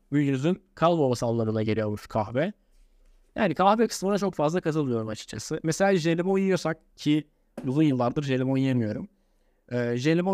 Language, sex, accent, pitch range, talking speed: Turkish, male, native, 120-155 Hz, 140 wpm